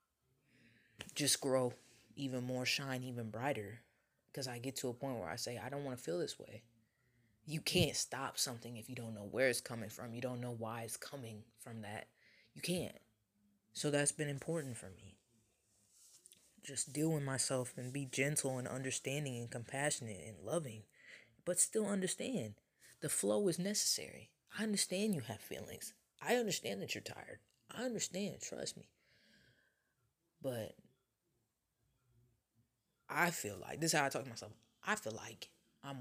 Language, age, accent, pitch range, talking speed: English, 20-39, American, 115-145 Hz, 165 wpm